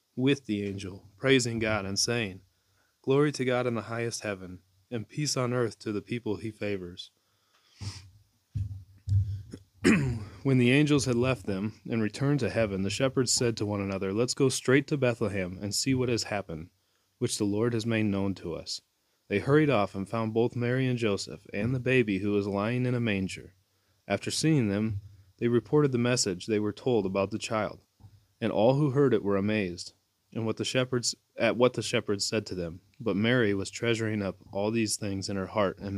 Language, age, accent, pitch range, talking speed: English, 30-49, American, 100-120 Hz, 195 wpm